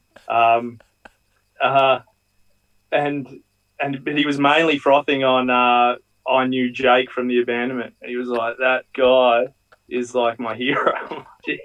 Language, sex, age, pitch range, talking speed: English, male, 20-39, 120-135 Hz, 135 wpm